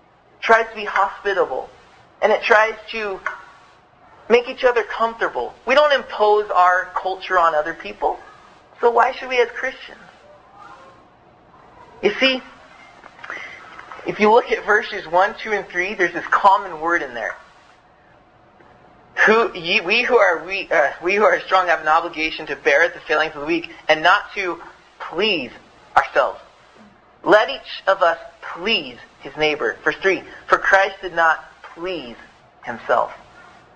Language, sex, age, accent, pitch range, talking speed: English, male, 20-39, American, 175-260 Hz, 150 wpm